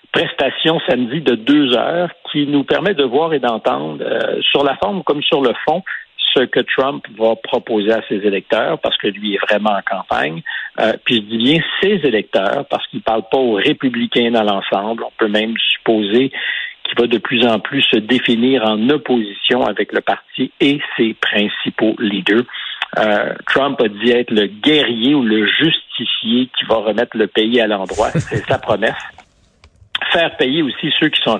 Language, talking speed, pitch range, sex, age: French, 185 wpm, 105-130 Hz, male, 60-79